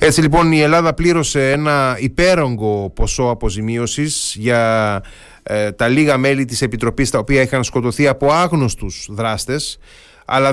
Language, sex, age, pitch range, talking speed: Greek, male, 30-49, 110-145 Hz, 130 wpm